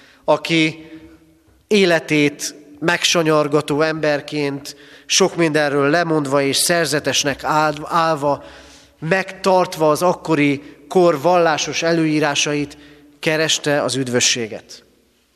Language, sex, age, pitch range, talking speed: Hungarian, male, 30-49, 135-165 Hz, 75 wpm